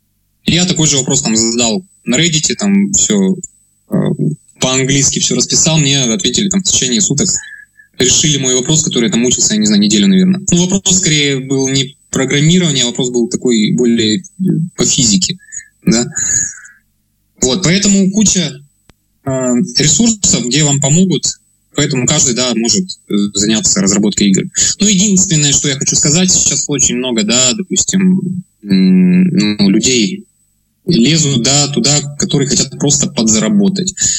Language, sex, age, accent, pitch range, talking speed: Russian, male, 20-39, native, 130-190 Hz, 145 wpm